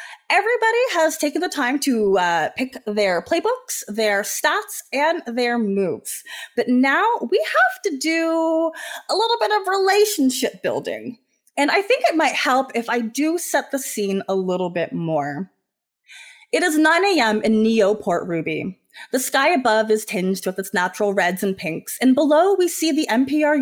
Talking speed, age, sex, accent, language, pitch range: 170 wpm, 20-39, female, American, English, 205-315 Hz